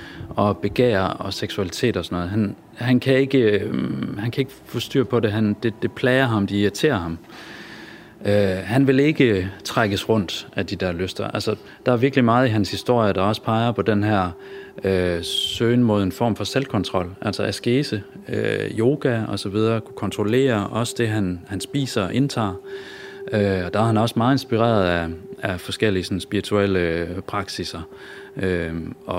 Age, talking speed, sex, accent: 30-49, 175 wpm, male, native